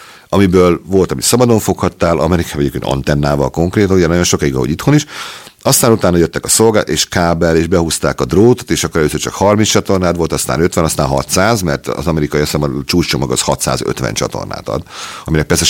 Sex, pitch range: male, 75-100 Hz